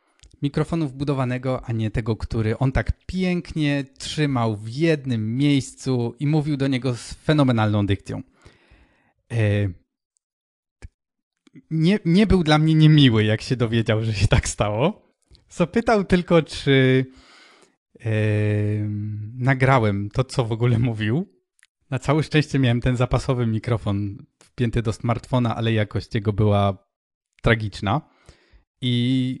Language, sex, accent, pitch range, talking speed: Polish, male, native, 115-145 Hz, 120 wpm